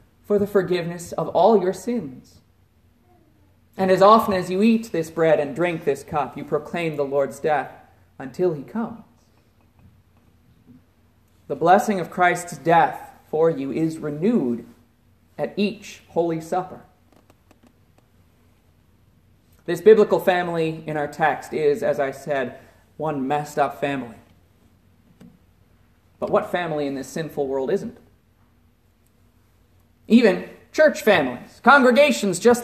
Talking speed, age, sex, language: 125 wpm, 40-59, male, English